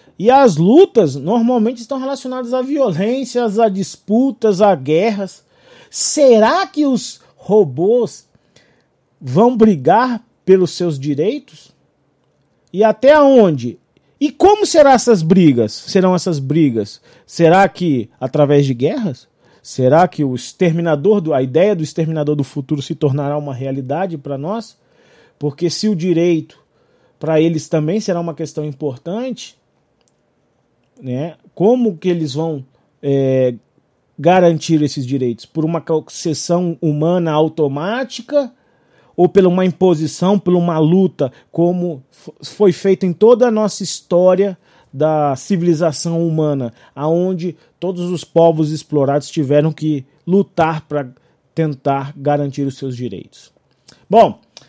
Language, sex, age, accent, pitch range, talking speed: Portuguese, male, 40-59, Brazilian, 145-205 Hz, 125 wpm